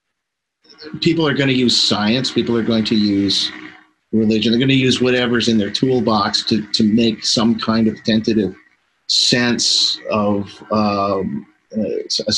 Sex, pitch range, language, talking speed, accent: male, 105-120 Hz, English, 145 wpm, American